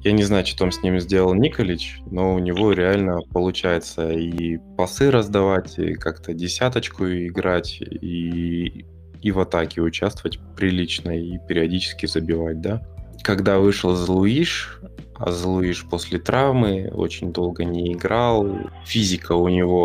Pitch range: 85-95 Hz